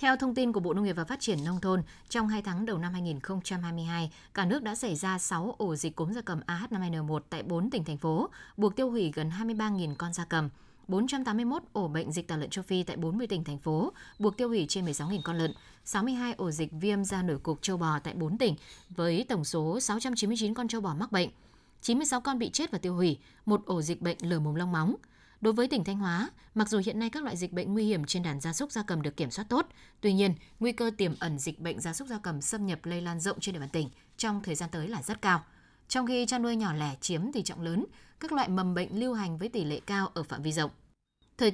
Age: 20-39